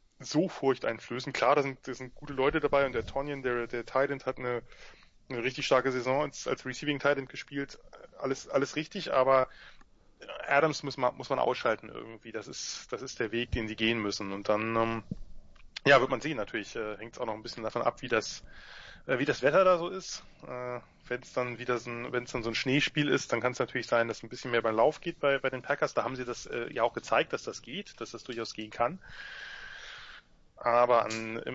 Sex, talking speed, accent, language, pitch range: male, 230 wpm, German, German, 115-140 Hz